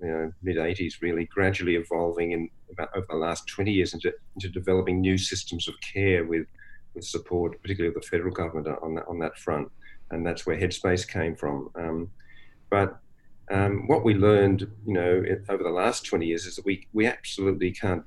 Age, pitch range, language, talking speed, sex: 50-69, 85-95 Hz, English, 195 wpm, male